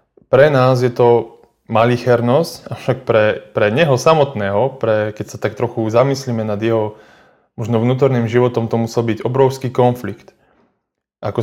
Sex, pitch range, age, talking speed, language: male, 110-125 Hz, 20-39, 140 wpm, Slovak